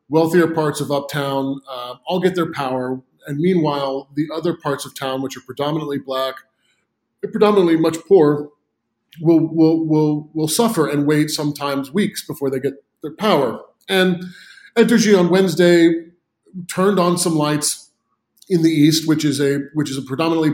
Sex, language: male, English